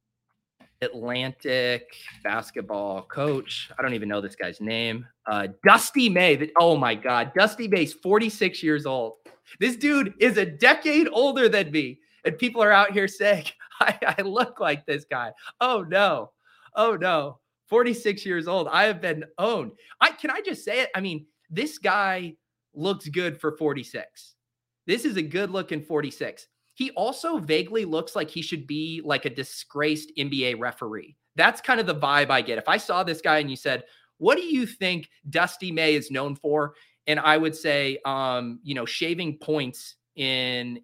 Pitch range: 135-205 Hz